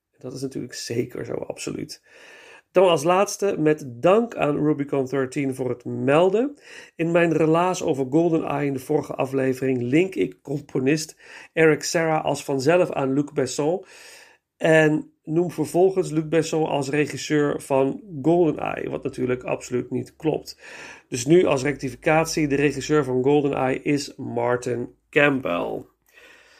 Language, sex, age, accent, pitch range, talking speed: Dutch, male, 40-59, Dutch, 135-170 Hz, 135 wpm